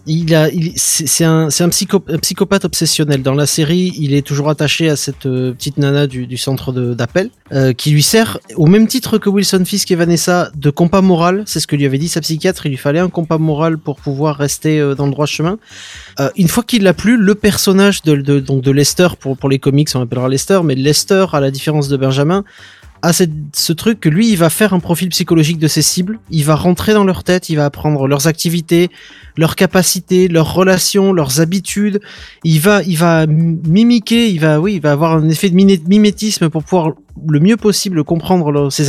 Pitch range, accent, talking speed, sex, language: 150-190 Hz, French, 220 wpm, male, French